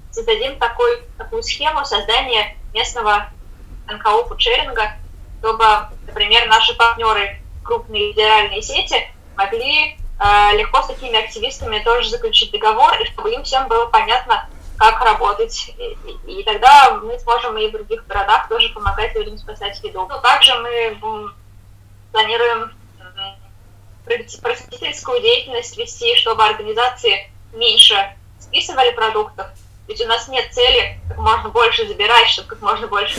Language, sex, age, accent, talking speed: Russian, female, 20-39, native, 125 wpm